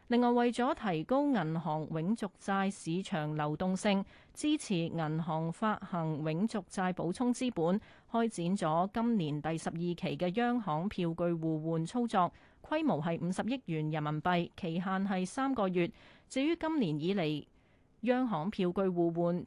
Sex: female